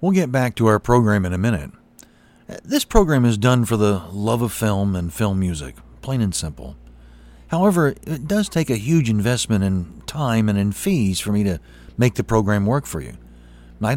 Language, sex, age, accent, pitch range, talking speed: English, male, 40-59, American, 90-135 Hz, 200 wpm